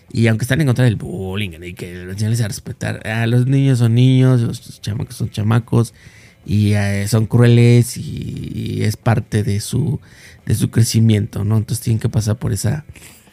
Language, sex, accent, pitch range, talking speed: Spanish, male, Mexican, 110-130 Hz, 180 wpm